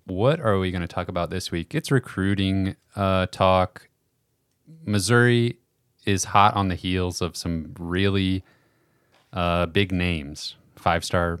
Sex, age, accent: male, 30-49, American